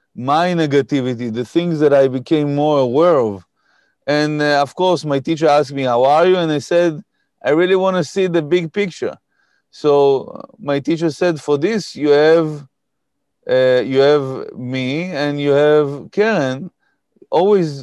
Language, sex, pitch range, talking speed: English, male, 135-170 Hz, 165 wpm